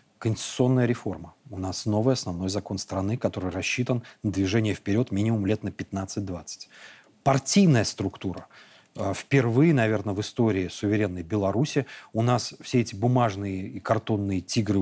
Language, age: Russian, 30-49